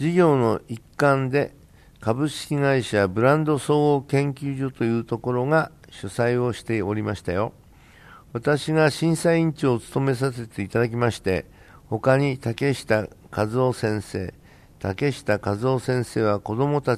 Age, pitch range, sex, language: 60-79, 110-140 Hz, male, Japanese